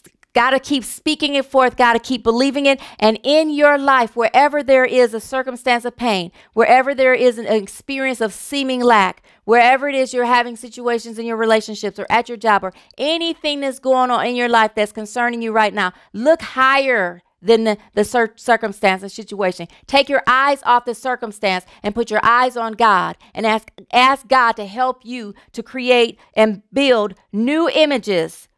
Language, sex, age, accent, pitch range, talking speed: English, female, 40-59, American, 225-275 Hz, 190 wpm